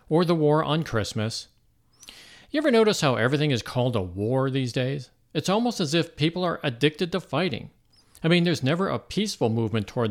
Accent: American